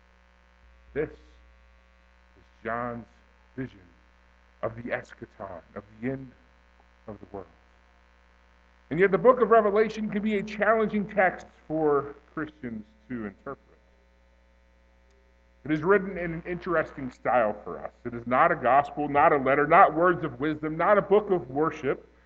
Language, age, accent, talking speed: English, 50-69, American, 145 wpm